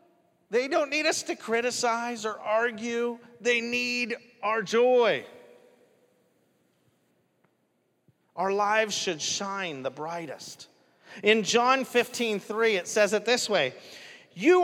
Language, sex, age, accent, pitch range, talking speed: English, male, 30-49, American, 165-240 Hz, 115 wpm